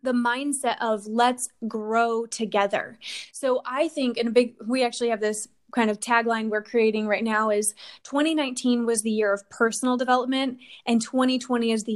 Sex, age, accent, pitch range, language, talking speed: female, 20-39, American, 220-250 Hz, English, 175 wpm